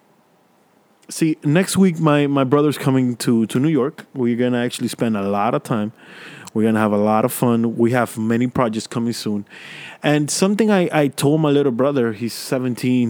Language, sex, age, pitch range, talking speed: English, male, 20-39, 120-165 Hz, 200 wpm